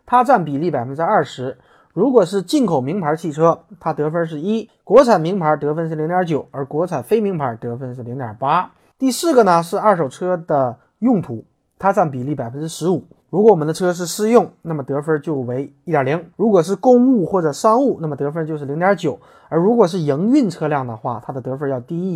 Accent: native